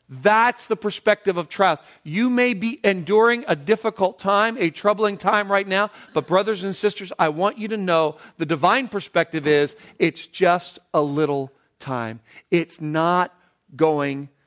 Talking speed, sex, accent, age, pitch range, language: 160 wpm, male, American, 40-59, 140-180 Hz, English